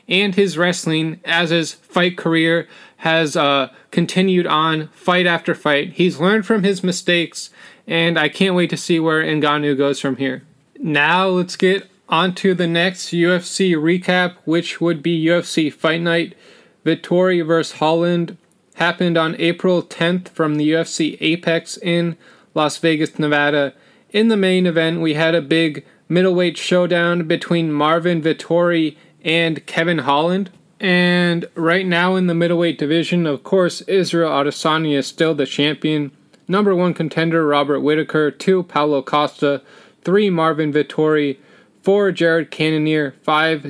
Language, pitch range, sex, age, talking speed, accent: English, 155-180 Hz, male, 20-39, 145 wpm, American